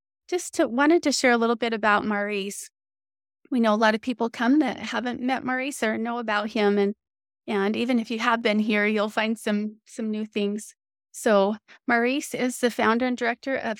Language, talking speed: English, 205 wpm